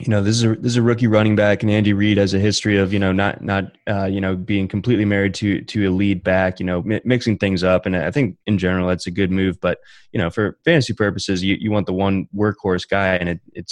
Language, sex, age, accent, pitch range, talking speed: English, male, 20-39, American, 90-105 Hz, 280 wpm